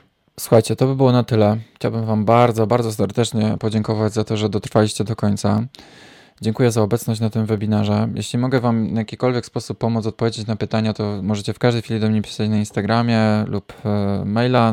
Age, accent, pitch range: 20-39, native, 105-115 Hz